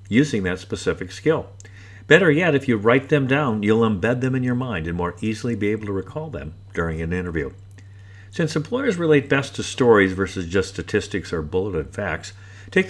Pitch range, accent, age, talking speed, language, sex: 95-130 Hz, American, 50-69, 190 wpm, English, male